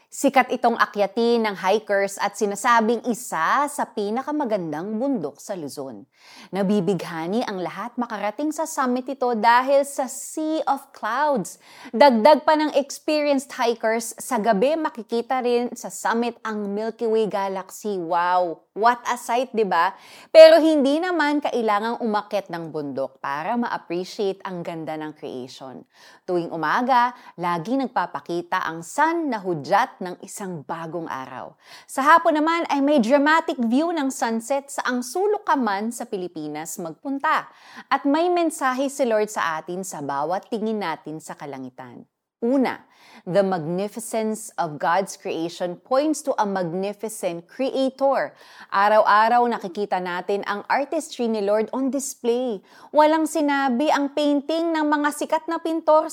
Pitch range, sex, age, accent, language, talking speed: 195-280 Hz, female, 20-39, native, Filipino, 135 wpm